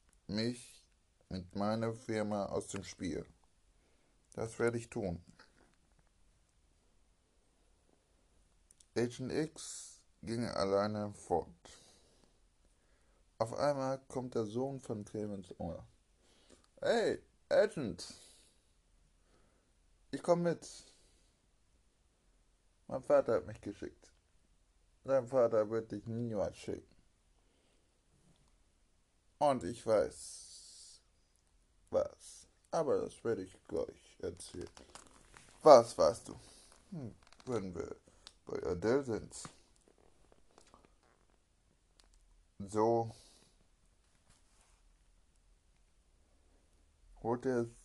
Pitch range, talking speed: 80-110 Hz, 75 wpm